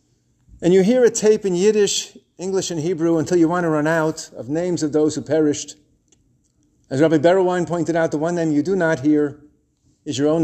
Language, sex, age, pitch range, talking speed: English, male, 50-69, 145-185 Hz, 215 wpm